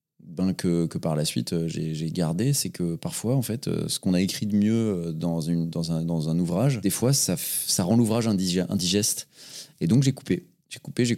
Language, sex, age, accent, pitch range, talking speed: French, male, 30-49, French, 85-115 Hz, 220 wpm